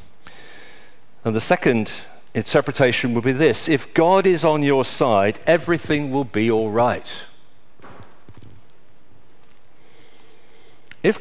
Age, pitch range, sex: 50-69, 110-140 Hz, male